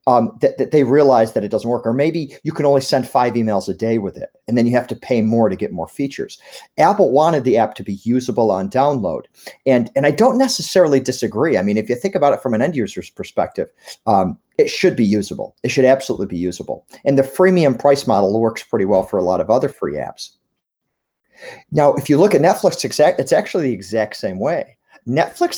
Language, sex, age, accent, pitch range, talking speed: English, male, 40-59, American, 110-155 Hz, 230 wpm